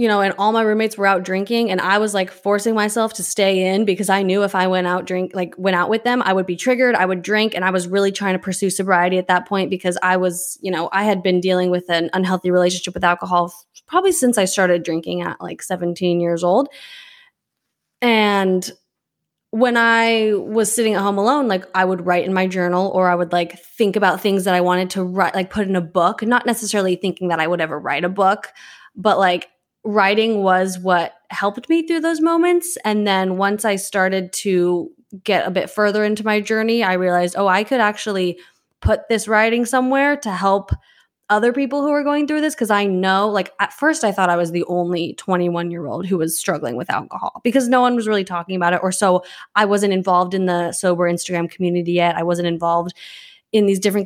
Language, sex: English, female